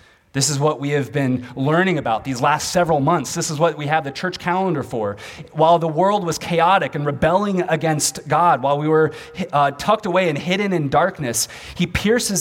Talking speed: 205 wpm